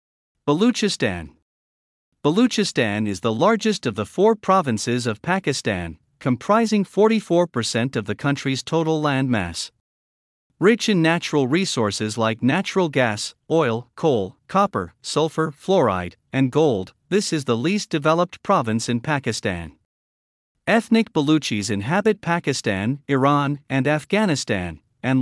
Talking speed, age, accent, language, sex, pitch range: 115 wpm, 50-69, American, English, male, 110-170 Hz